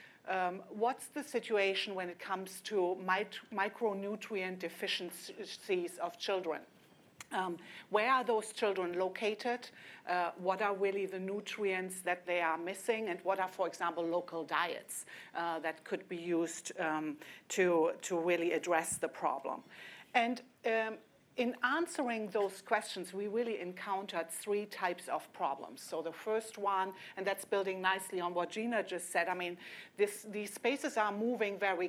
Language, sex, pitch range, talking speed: English, female, 175-215 Hz, 150 wpm